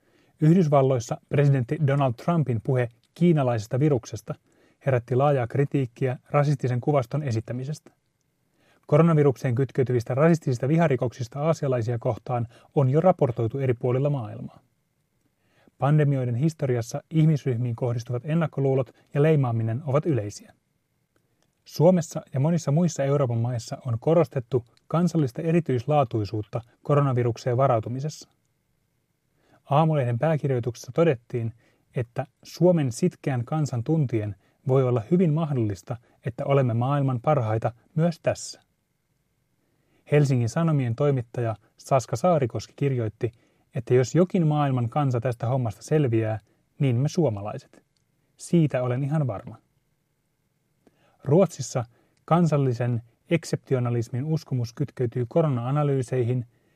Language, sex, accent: Finnish, male, native